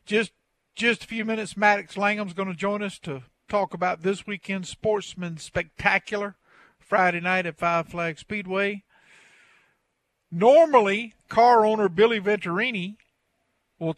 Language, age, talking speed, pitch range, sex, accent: English, 50-69, 130 wpm, 150-200 Hz, male, American